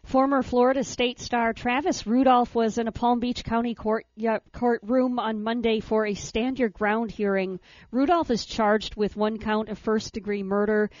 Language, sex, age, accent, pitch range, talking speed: English, female, 50-69, American, 195-225 Hz, 165 wpm